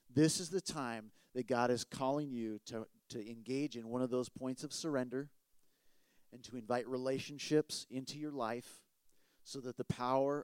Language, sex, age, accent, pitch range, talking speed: English, male, 40-59, American, 120-150 Hz, 170 wpm